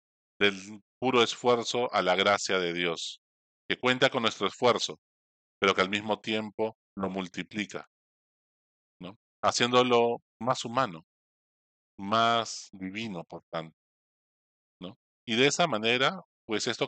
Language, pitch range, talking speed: Spanish, 95-120 Hz, 115 wpm